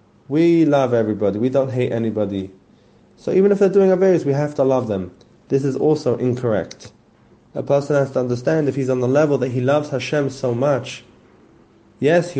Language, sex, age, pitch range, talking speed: English, male, 30-49, 130-155 Hz, 195 wpm